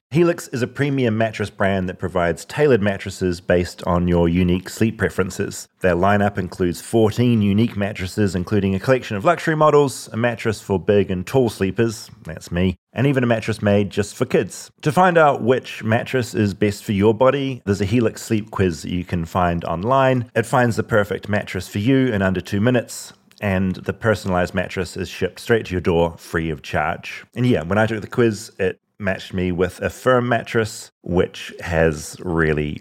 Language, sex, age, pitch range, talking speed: English, male, 30-49, 90-120 Hz, 190 wpm